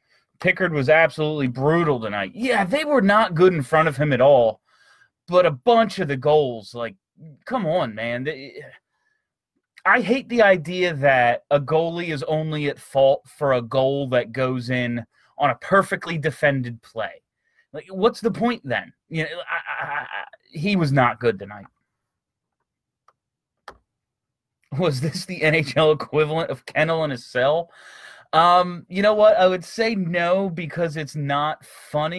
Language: English